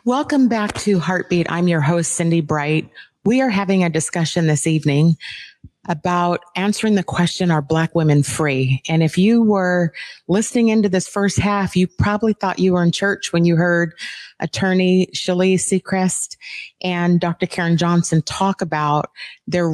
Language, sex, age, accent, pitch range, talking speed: English, female, 30-49, American, 155-200 Hz, 160 wpm